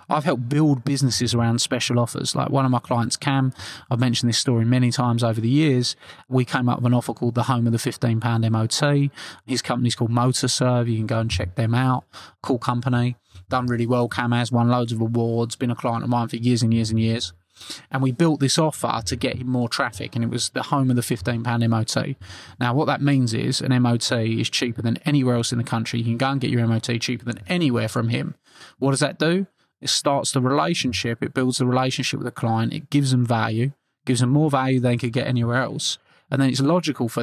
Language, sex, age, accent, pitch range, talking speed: English, male, 20-39, British, 115-135 Hz, 240 wpm